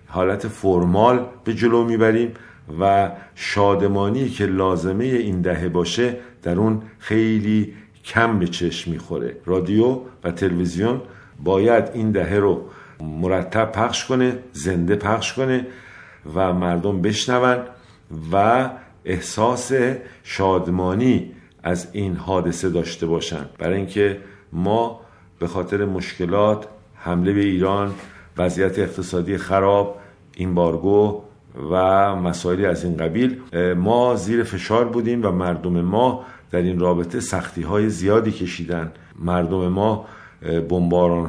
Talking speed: 115 wpm